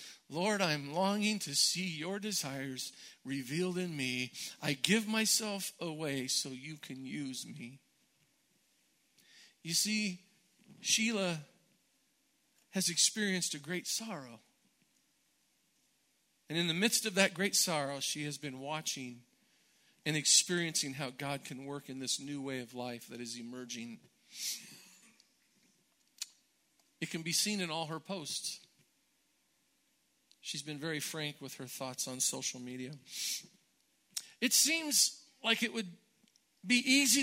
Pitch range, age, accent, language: 145-210 Hz, 50-69, American, English